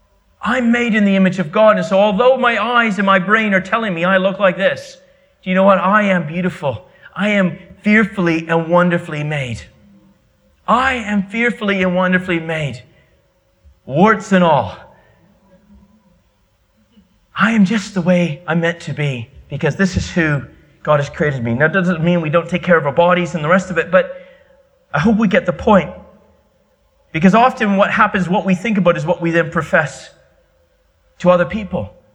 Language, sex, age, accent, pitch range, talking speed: English, male, 30-49, American, 130-195 Hz, 185 wpm